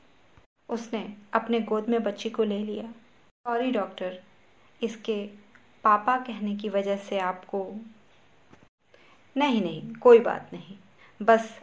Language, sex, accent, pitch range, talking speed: Hindi, female, native, 195-225 Hz, 120 wpm